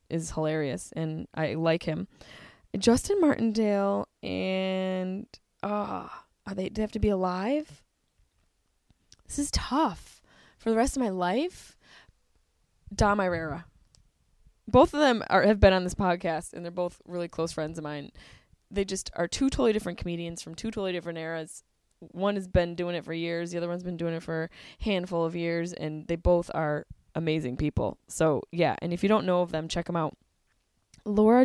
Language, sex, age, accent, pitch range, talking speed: English, female, 20-39, American, 170-220 Hz, 175 wpm